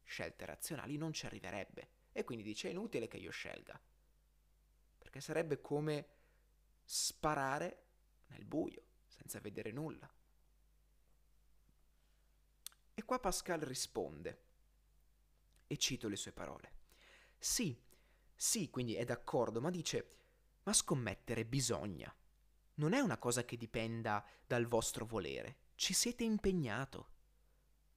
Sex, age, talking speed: male, 30-49, 115 wpm